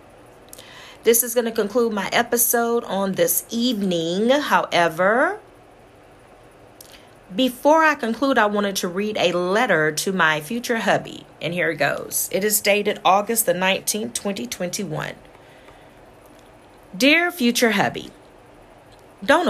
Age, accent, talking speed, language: 40-59, American, 120 wpm, English